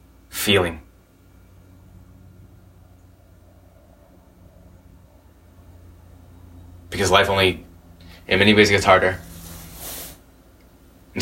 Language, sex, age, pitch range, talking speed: English, male, 20-39, 70-95 Hz, 55 wpm